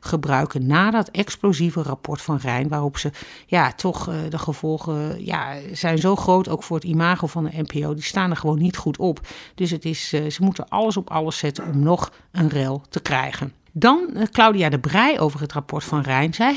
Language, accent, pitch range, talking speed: Dutch, Dutch, 145-175 Hz, 205 wpm